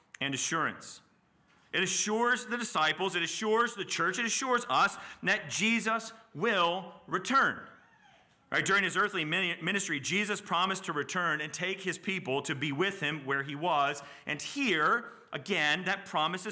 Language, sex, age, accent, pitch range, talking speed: English, male, 40-59, American, 155-210 Hz, 155 wpm